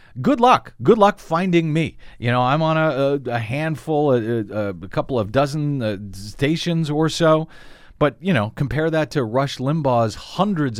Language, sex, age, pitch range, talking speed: English, male, 40-59, 110-155 Hz, 180 wpm